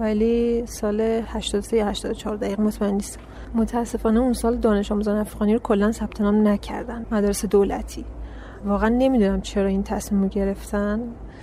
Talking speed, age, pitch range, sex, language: 135 wpm, 30-49, 205-230 Hz, female, Persian